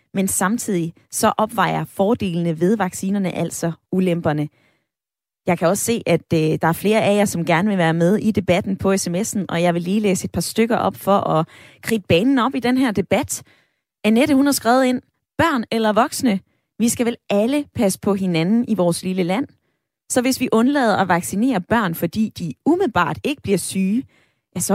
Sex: female